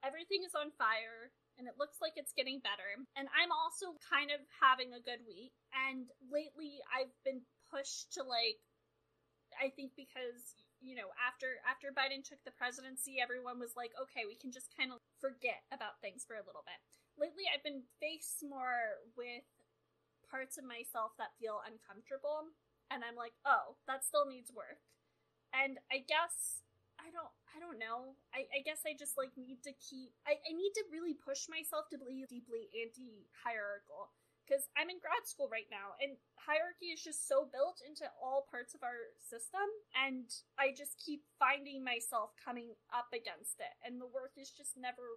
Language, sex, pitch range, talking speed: English, female, 245-295 Hz, 185 wpm